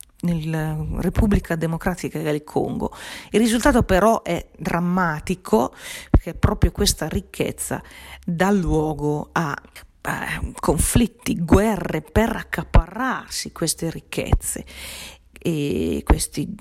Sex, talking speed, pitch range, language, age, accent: female, 90 wpm, 150-180 Hz, Italian, 40-59, native